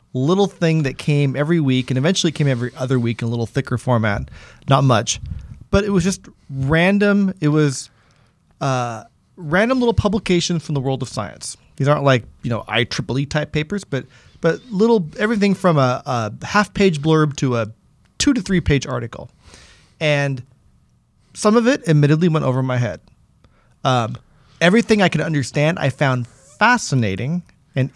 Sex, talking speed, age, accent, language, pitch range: male, 165 wpm, 30-49, American, English, 125-175 Hz